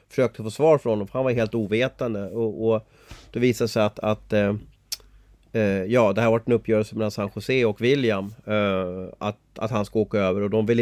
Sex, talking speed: male, 220 wpm